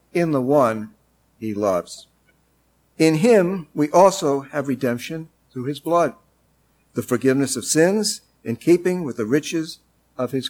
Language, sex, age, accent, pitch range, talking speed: English, male, 50-69, American, 110-155 Hz, 145 wpm